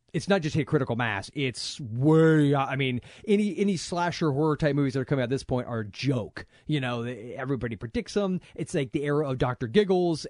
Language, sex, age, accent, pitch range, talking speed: English, male, 30-49, American, 130-175 Hz, 220 wpm